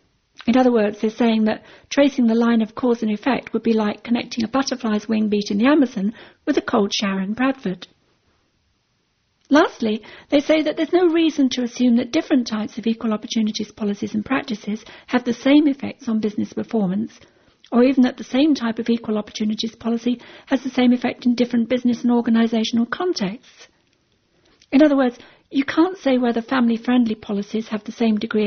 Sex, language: female, English